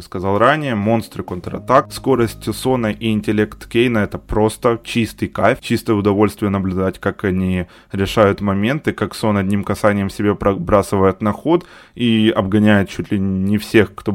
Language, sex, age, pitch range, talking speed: Ukrainian, male, 20-39, 100-120 Hz, 150 wpm